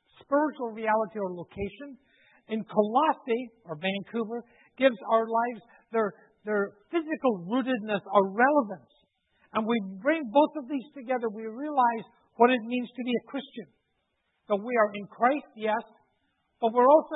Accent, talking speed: American, 150 wpm